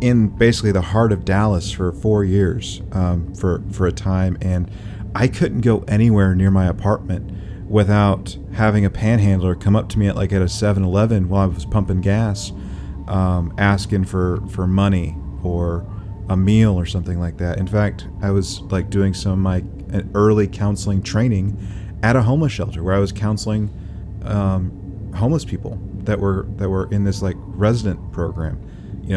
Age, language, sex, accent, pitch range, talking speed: 30-49, English, male, American, 95-105 Hz, 175 wpm